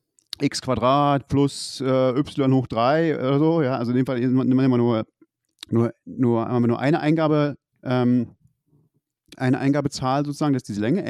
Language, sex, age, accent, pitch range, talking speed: German, male, 40-59, German, 125-150 Hz, 160 wpm